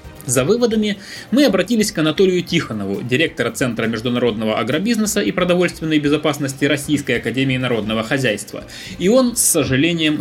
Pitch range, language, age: 120-195 Hz, Russian, 20-39